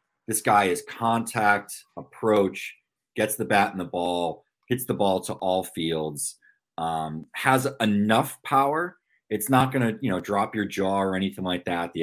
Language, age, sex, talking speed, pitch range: English, 30-49, male, 175 wpm, 85-110 Hz